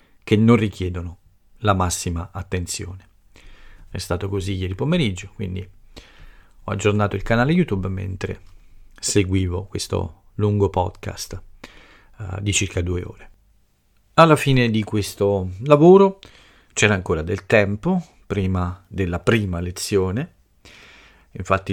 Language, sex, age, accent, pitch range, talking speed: Italian, male, 40-59, native, 90-105 Hz, 110 wpm